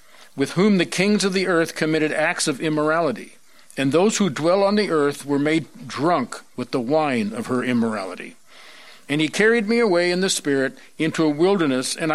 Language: English